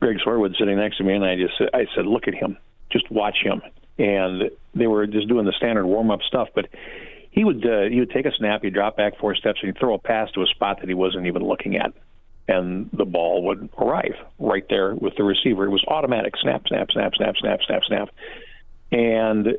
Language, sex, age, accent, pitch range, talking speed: English, male, 50-69, American, 95-110 Hz, 235 wpm